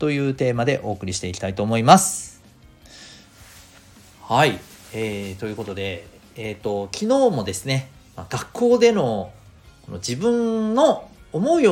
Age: 40-59